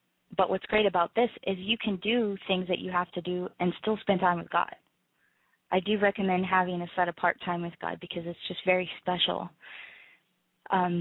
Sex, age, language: female, 20-39, English